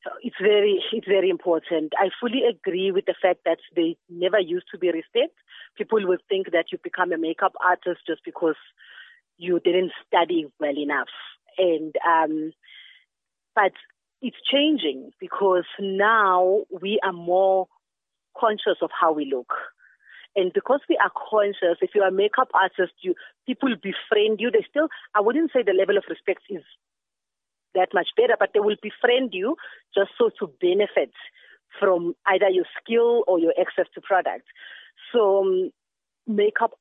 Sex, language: female, English